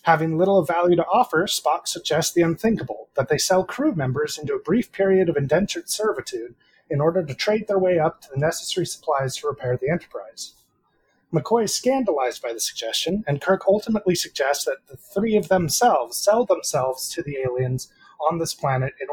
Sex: male